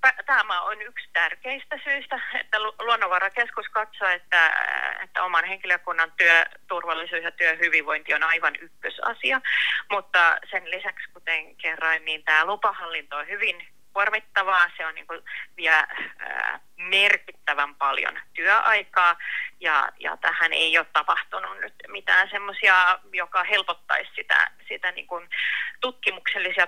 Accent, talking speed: native, 105 wpm